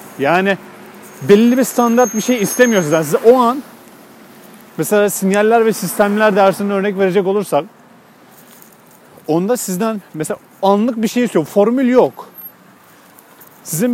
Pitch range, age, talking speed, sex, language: 165-215 Hz, 40-59, 125 wpm, male, Turkish